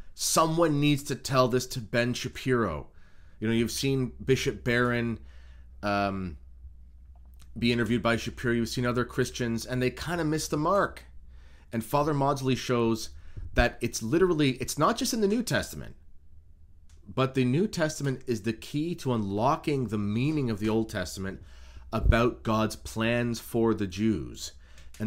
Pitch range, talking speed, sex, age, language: 85-125 Hz, 160 wpm, male, 30-49, English